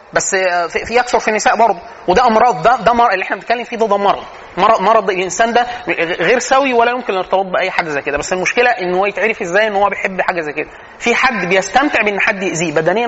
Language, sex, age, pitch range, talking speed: Arabic, male, 20-39, 190-250 Hz, 220 wpm